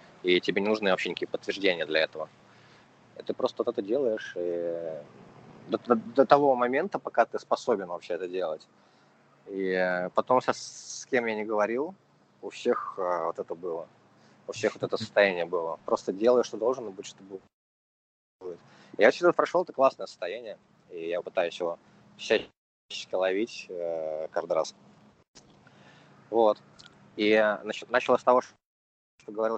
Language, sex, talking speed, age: Russian, male, 160 wpm, 20-39